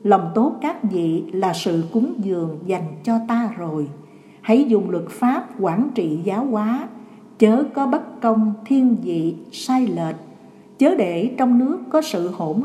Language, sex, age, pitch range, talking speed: Vietnamese, female, 60-79, 180-245 Hz, 165 wpm